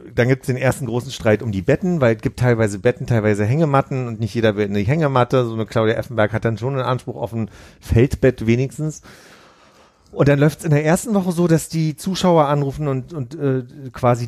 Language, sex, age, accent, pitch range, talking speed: German, male, 40-59, German, 105-130 Hz, 225 wpm